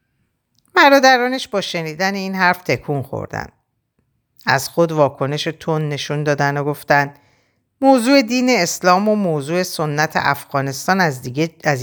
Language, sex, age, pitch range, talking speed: Persian, female, 50-69, 140-200 Hz, 125 wpm